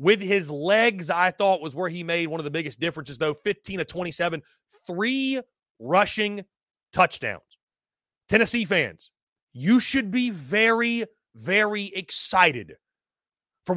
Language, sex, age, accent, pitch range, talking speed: English, male, 30-49, American, 165-220 Hz, 130 wpm